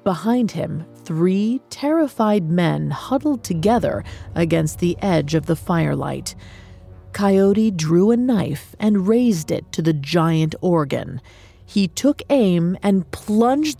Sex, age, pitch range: female, 30-49, 160-225 Hz